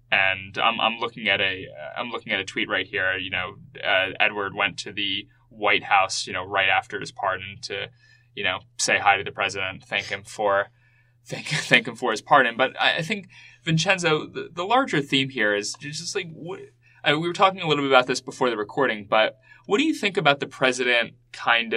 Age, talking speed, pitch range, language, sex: 20-39, 220 wpm, 110-140 Hz, English, male